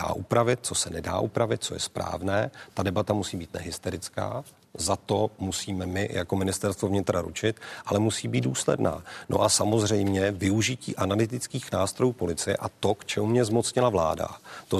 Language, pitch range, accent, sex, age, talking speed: Czech, 95-120 Hz, native, male, 40-59, 160 wpm